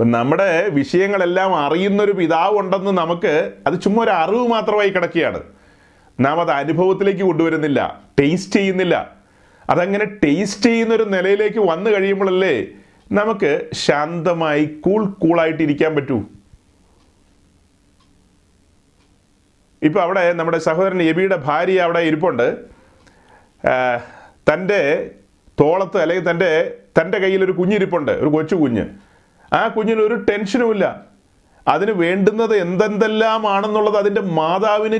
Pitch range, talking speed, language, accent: 150-210 Hz, 95 wpm, Malayalam, native